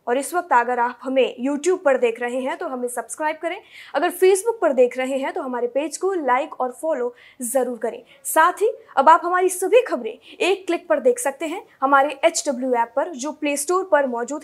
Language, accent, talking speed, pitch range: Hindi, native, 215 wpm, 255-340 Hz